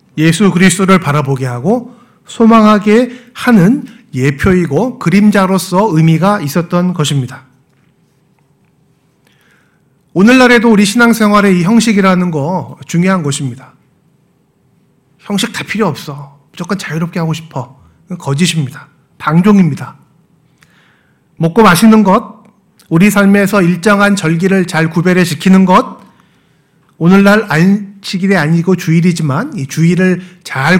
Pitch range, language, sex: 160-210 Hz, Korean, male